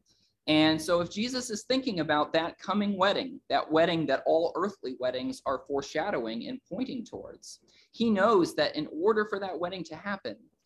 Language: English